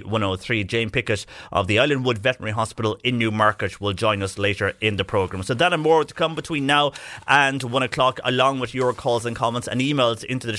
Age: 30-49